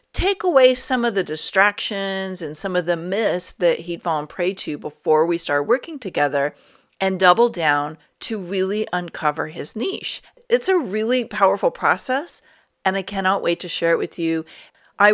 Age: 40-59